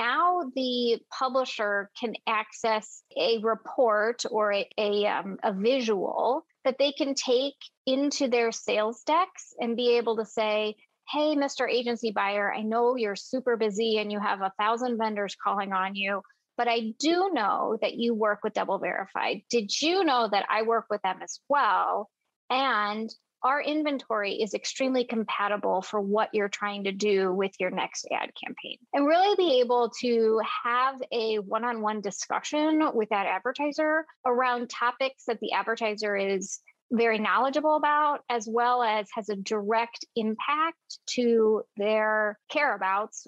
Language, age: English, 30-49